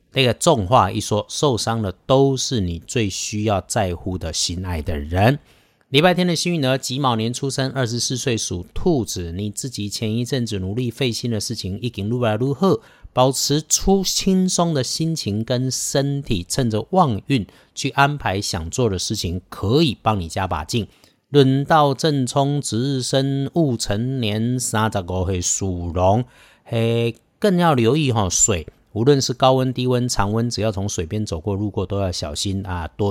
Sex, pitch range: male, 100-135 Hz